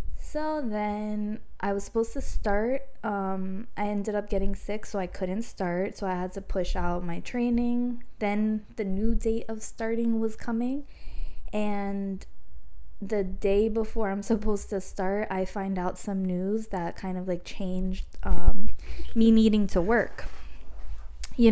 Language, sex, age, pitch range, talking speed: English, female, 20-39, 185-225 Hz, 160 wpm